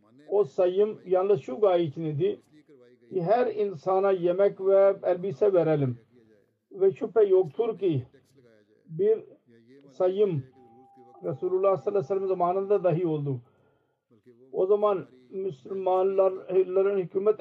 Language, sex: Turkish, male